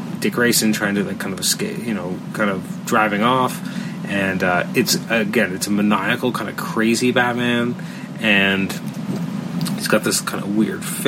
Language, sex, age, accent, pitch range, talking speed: English, male, 30-49, American, 100-120 Hz, 175 wpm